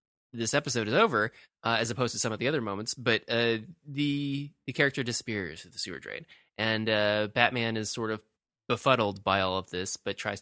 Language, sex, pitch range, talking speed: English, male, 100-125 Hz, 205 wpm